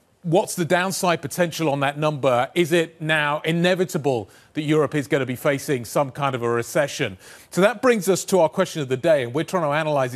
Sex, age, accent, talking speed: male, 30-49, British, 225 wpm